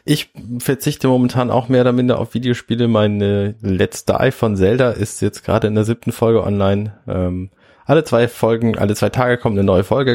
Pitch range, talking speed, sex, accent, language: 105-135 Hz, 195 wpm, male, German, German